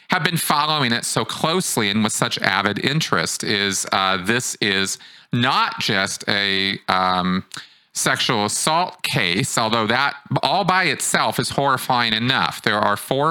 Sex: male